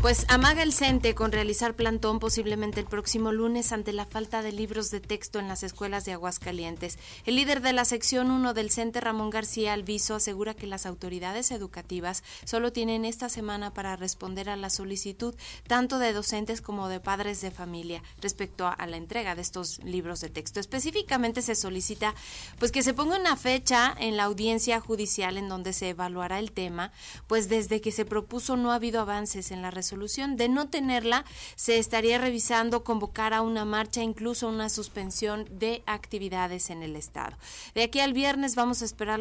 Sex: female